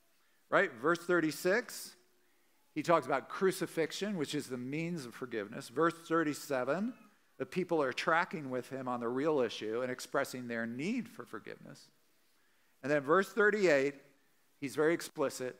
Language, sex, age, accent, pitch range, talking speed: English, male, 50-69, American, 130-175 Hz, 145 wpm